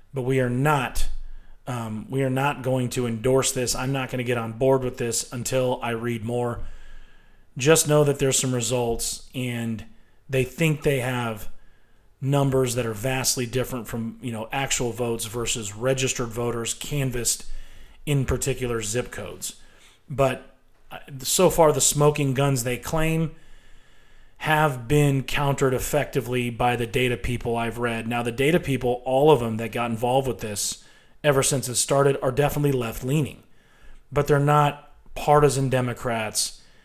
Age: 30-49